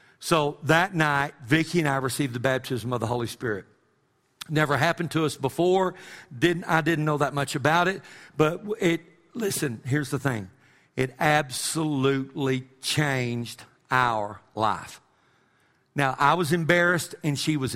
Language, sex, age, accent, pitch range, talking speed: English, male, 50-69, American, 130-160 Hz, 150 wpm